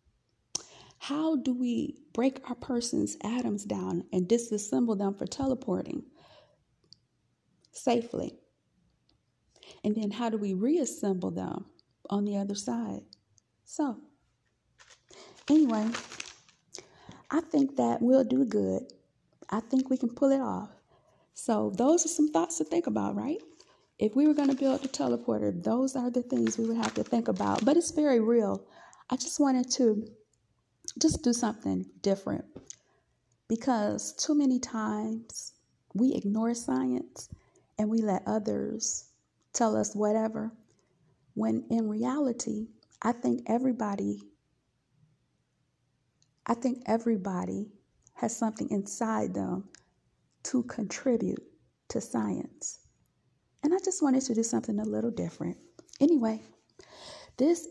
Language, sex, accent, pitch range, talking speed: English, female, American, 200-265 Hz, 125 wpm